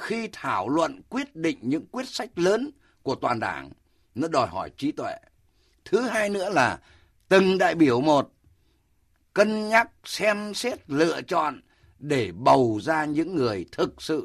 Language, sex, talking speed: Vietnamese, male, 160 wpm